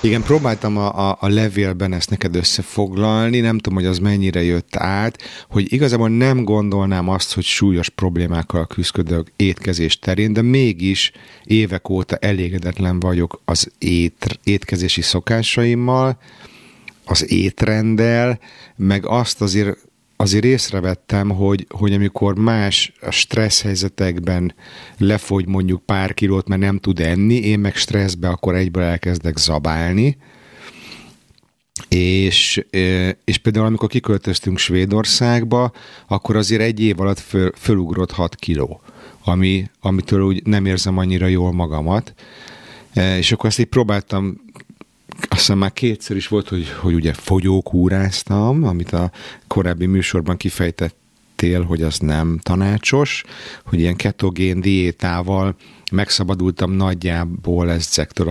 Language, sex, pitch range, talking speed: Hungarian, male, 90-110 Hz, 120 wpm